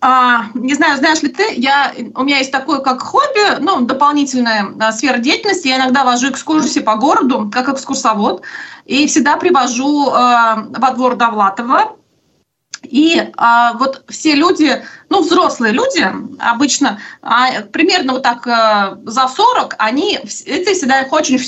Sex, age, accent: female, 30-49, native